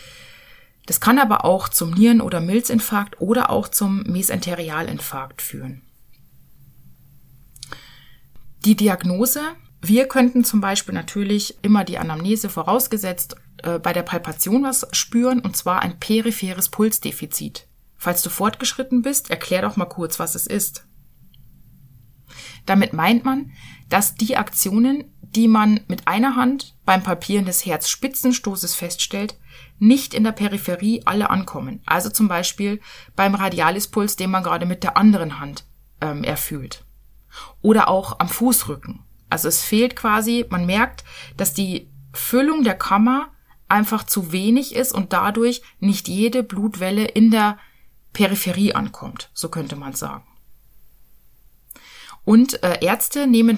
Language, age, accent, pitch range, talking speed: German, 30-49, German, 175-235 Hz, 130 wpm